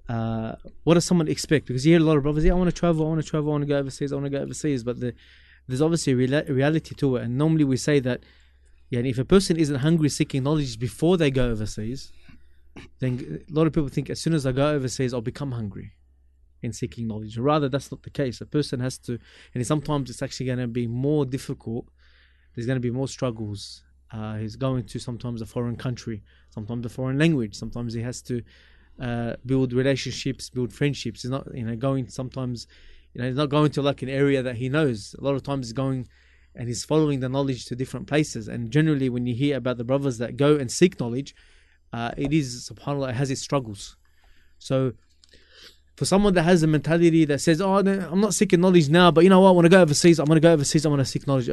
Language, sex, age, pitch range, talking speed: English, male, 20-39, 115-150 Hz, 240 wpm